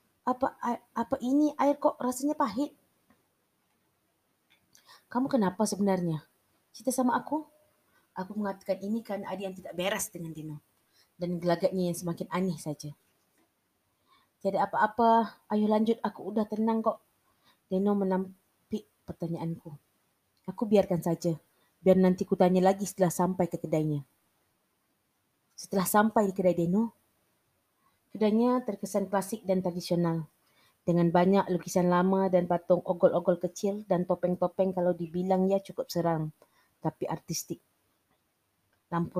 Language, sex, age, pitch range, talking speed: Malay, female, 30-49, 170-200 Hz, 120 wpm